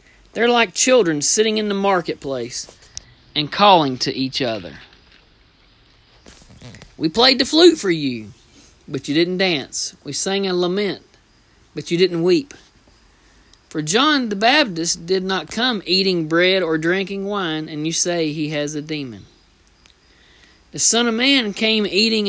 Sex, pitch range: male, 130-195 Hz